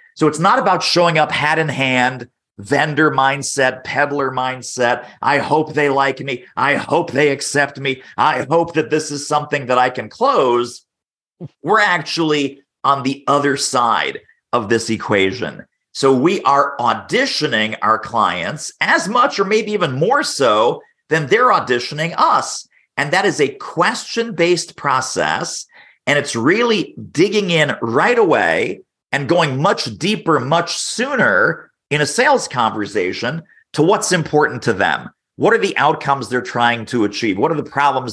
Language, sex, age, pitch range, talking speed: English, male, 40-59, 125-155 Hz, 155 wpm